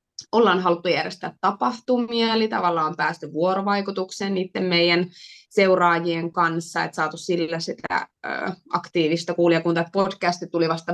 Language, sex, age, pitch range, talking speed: Finnish, female, 20-39, 170-215 Hz, 125 wpm